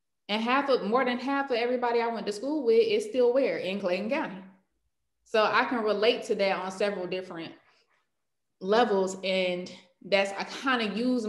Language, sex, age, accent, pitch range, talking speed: English, female, 20-39, American, 185-230 Hz, 185 wpm